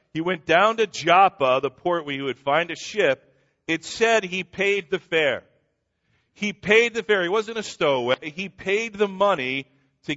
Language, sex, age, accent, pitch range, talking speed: English, male, 50-69, American, 110-165 Hz, 190 wpm